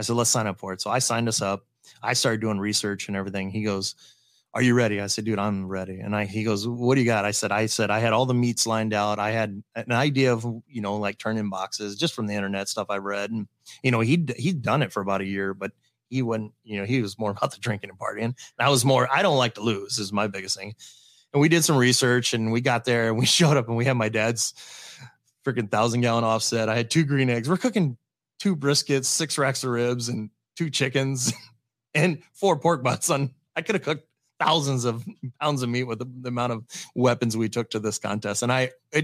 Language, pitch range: English, 105-130 Hz